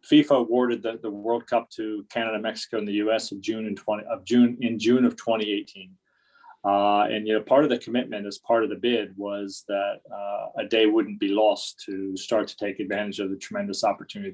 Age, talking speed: 30-49, 220 wpm